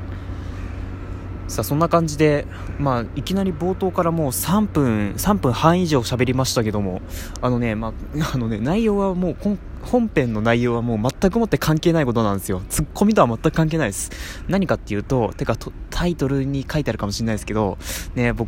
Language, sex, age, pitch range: Japanese, male, 20-39, 105-160 Hz